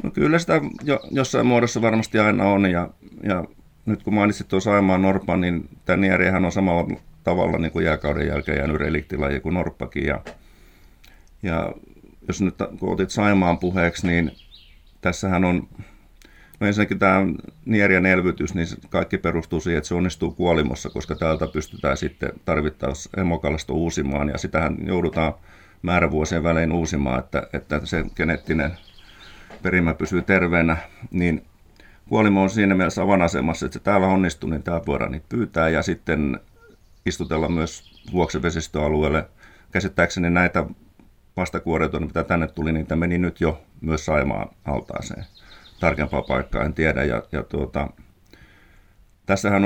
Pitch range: 80-95 Hz